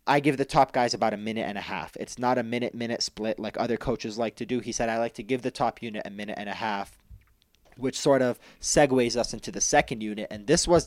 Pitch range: 105-130 Hz